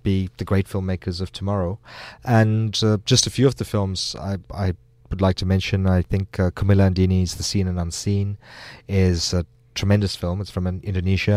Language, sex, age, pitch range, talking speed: English, male, 30-49, 95-115 Hz, 195 wpm